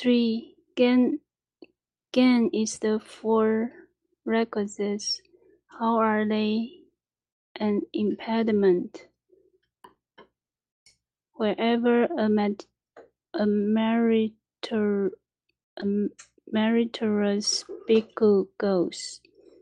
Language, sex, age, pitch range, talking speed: English, female, 30-49, 205-300 Hz, 60 wpm